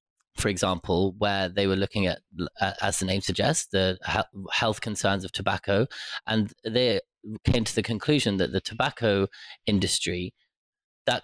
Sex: male